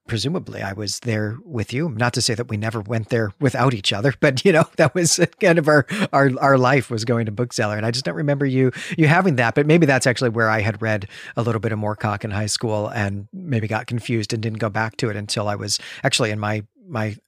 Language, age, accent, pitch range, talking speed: English, 40-59, American, 115-155 Hz, 255 wpm